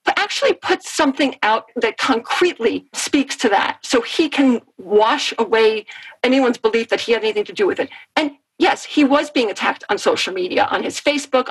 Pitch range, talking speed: 235-305 Hz, 195 wpm